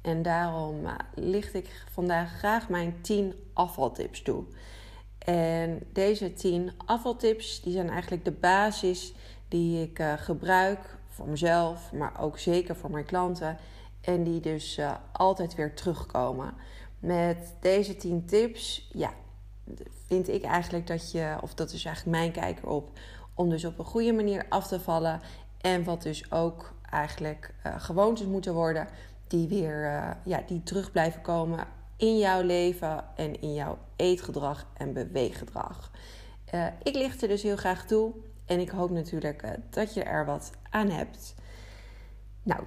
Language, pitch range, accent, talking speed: Dutch, 150-185 Hz, Dutch, 155 wpm